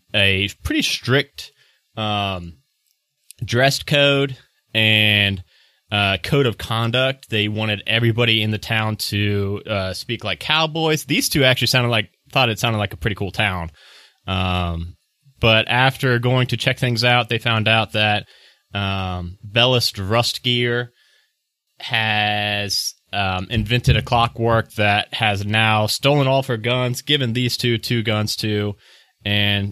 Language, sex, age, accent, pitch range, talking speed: English, male, 30-49, American, 100-125 Hz, 140 wpm